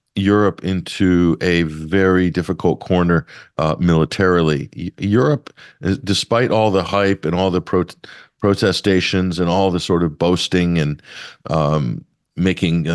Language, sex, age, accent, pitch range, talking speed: English, male, 50-69, American, 80-100 Hz, 125 wpm